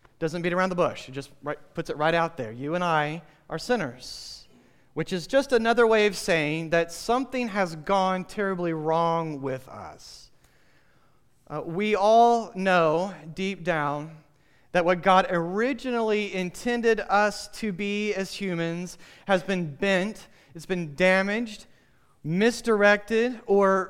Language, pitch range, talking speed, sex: English, 150-195 Hz, 140 wpm, male